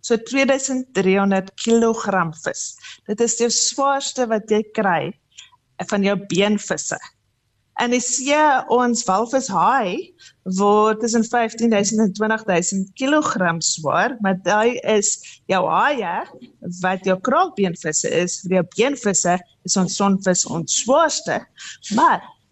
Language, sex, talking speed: English, female, 115 wpm